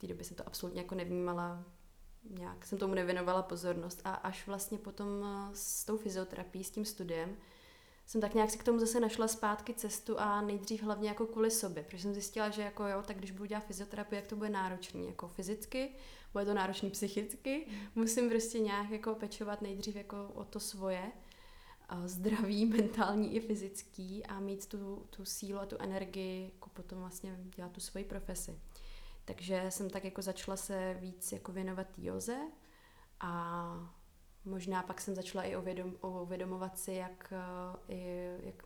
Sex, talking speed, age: female, 170 wpm, 20-39